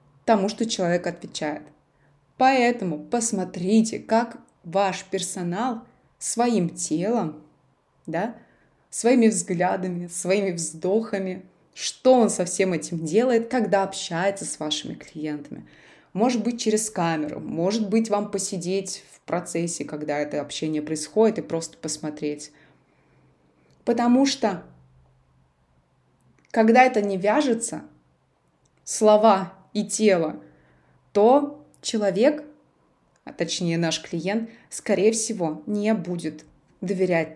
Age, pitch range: 20-39, 160-215 Hz